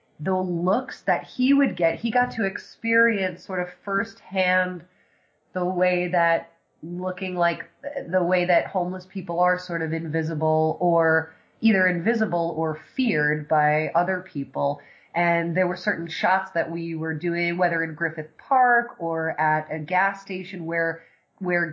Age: 20-39